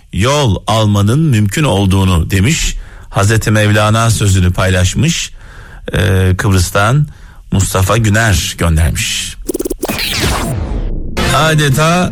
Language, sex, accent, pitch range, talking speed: Turkish, male, native, 95-130 Hz, 75 wpm